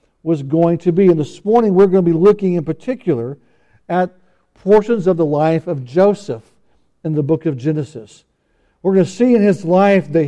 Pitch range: 160-200 Hz